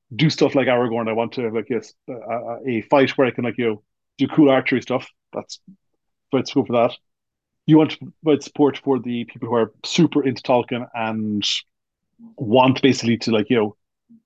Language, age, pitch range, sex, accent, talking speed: English, 30-49, 115-140 Hz, male, Irish, 200 wpm